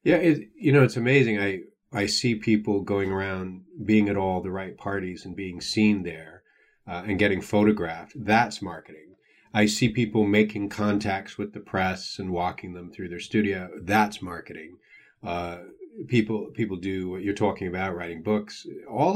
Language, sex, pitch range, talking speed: English, male, 95-120 Hz, 170 wpm